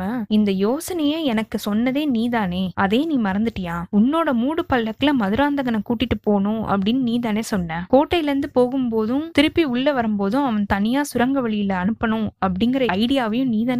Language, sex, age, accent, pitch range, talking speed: Tamil, female, 20-39, native, 205-265 Hz, 45 wpm